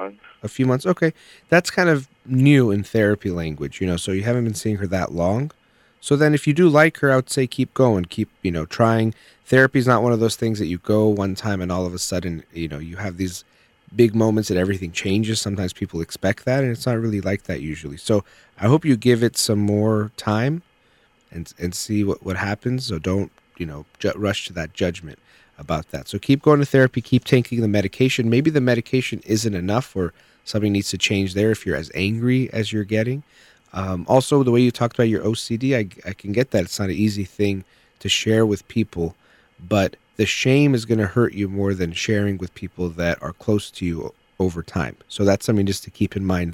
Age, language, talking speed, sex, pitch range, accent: 30-49, English, 230 wpm, male, 90-120 Hz, American